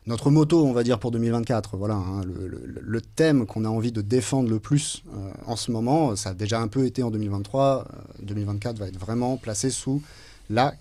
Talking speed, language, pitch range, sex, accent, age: 220 wpm, French, 105-130 Hz, male, French, 30-49